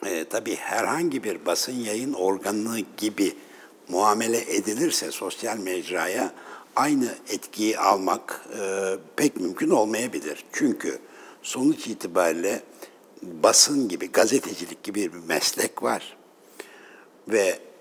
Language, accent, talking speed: Turkish, native, 100 wpm